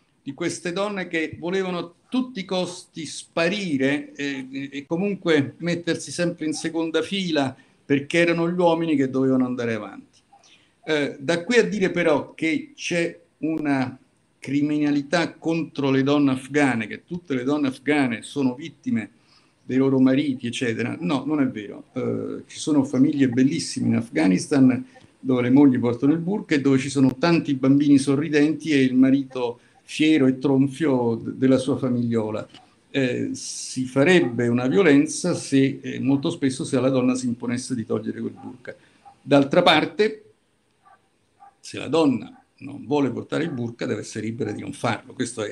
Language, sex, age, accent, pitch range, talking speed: Italian, male, 50-69, native, 130-165 Hz, 155 wpm